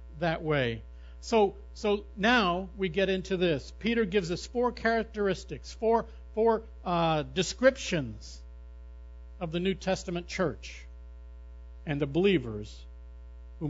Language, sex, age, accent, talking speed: English, male, 60-79, American, 120 wpm